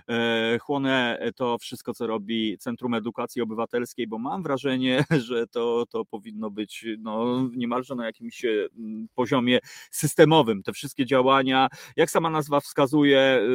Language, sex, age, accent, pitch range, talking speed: Polish, male, 30-49, native, 130-175 Hz, 125 wpm